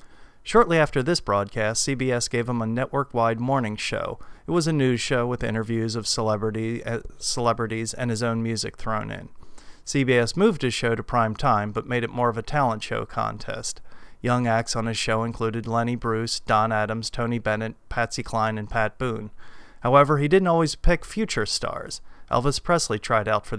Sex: male